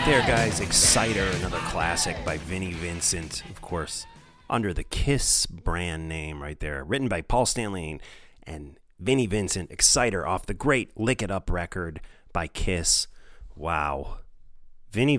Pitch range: 80-100 Hz